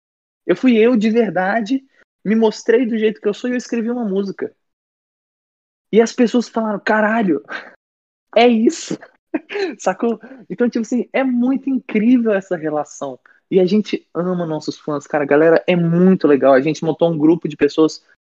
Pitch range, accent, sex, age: 140-195 Hz, Brazilian, male, 20-39